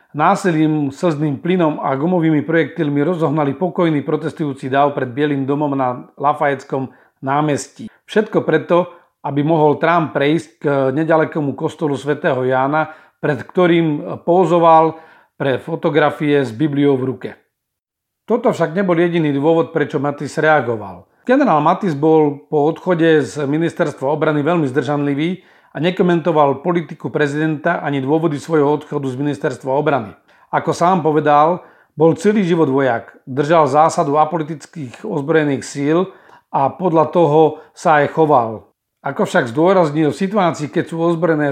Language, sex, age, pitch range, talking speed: Slovak, male, 40-59, 145-170 Hz, 130 wpm